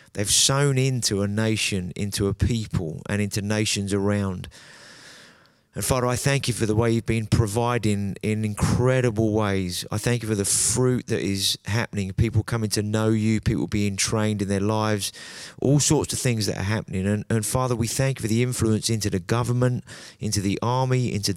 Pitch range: 105-120 Hz